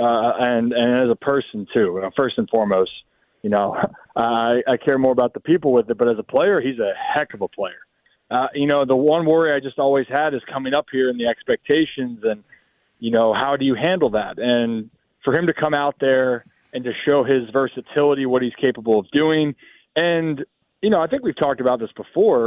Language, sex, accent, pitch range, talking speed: English, male, American, 120-155 Hz, 225 wpm